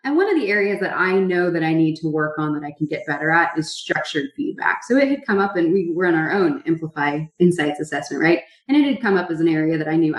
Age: 20-39